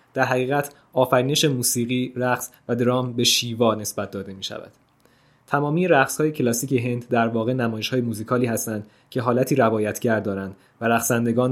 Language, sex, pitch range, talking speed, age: Persian, male, 115-130 Hz, 155 wpm, 20-39